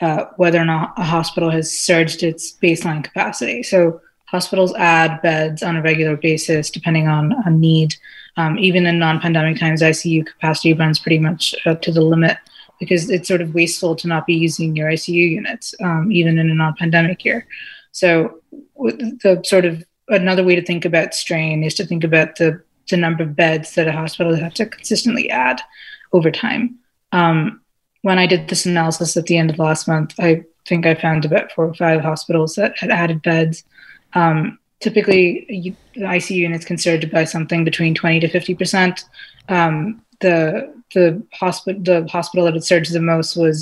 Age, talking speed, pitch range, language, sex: 20-39, 185 wpm, 160-185 Hz, English, female